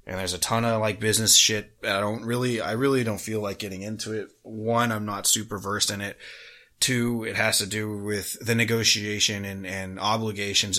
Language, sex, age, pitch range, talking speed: English, male, 20-39, 95-110 Hz, 205 wpm